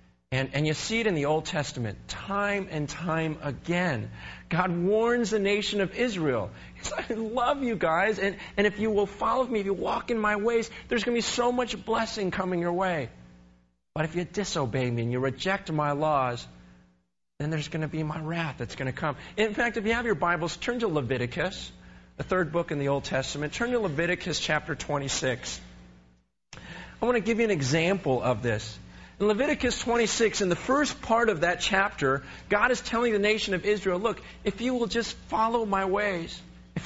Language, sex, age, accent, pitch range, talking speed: English, male, 40-59, American, 130-215 Hz, 205 wpm